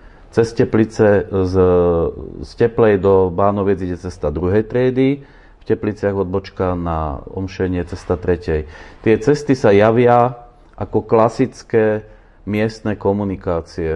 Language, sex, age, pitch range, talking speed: Slovak, male, 40-59, 95-110 Hz, 110 wpm